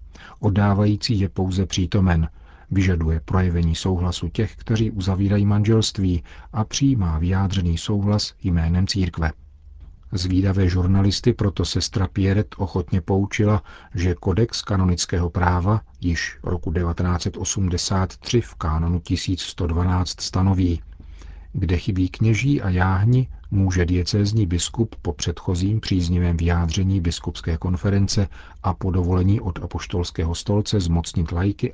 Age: 40-59